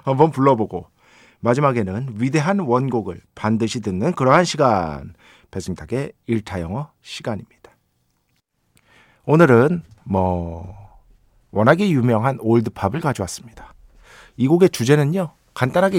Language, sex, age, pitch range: Korean, male, 40-59, 115-195 Hz